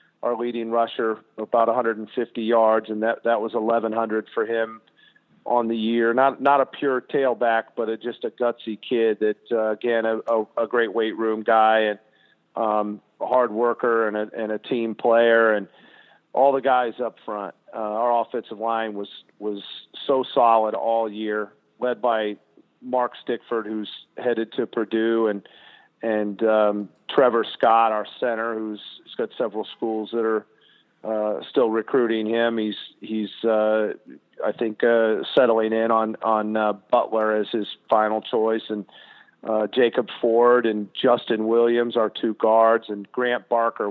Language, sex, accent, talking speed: English, male, American, 155 wpm